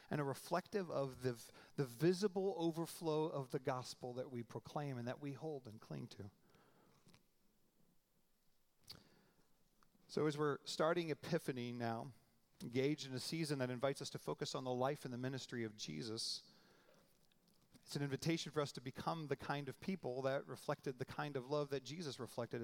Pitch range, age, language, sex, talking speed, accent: 120-155 Hz, 40-59, English, male, 170 wpm, American